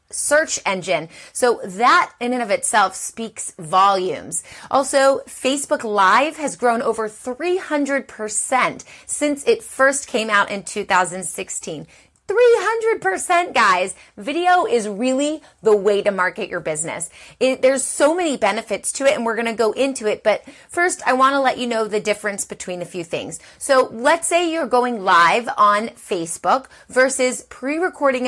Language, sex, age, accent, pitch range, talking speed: English, female, 30-49, American, 205-275 Hz, 155 wpm